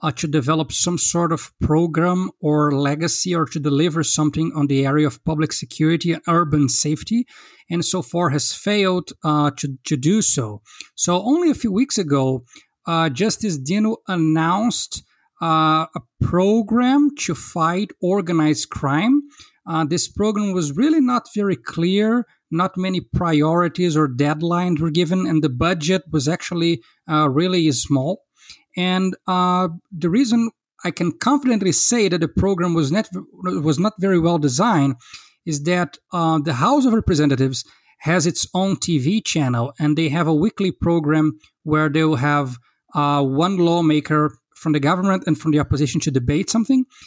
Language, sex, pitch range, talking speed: English, male, 150-185 Hz, 160 wpm